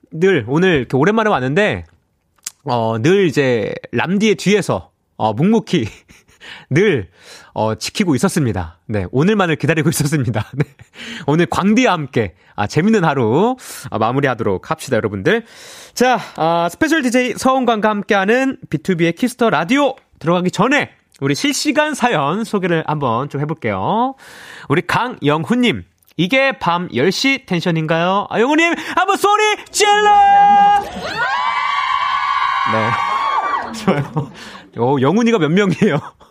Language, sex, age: Korean, male, 30-49